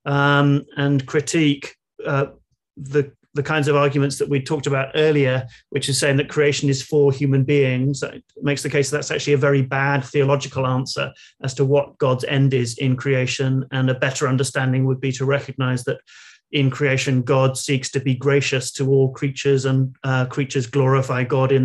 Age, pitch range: 40-59, 135-145 Hz